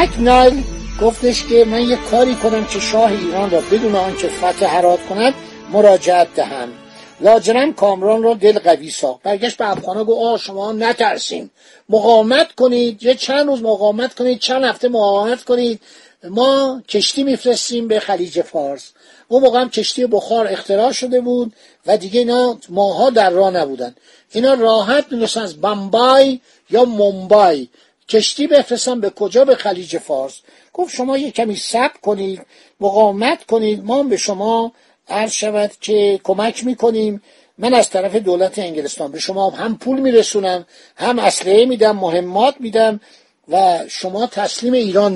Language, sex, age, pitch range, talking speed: Persian, male, 50-69, 190-245 Hz, 150 wpm